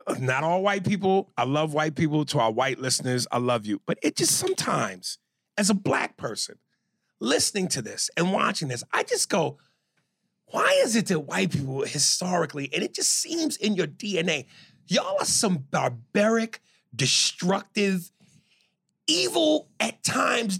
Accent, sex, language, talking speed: American, male, English, 155 wpm